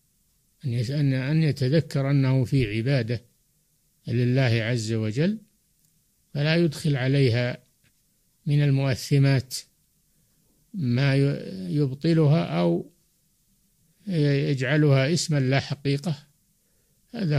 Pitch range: 130-155 Hz